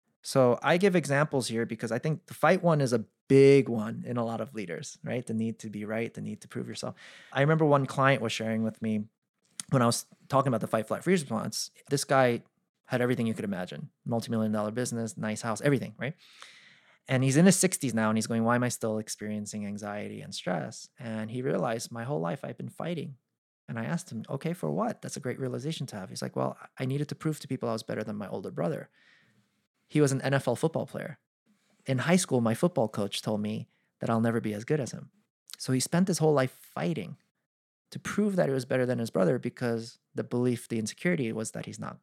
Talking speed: 235 wpm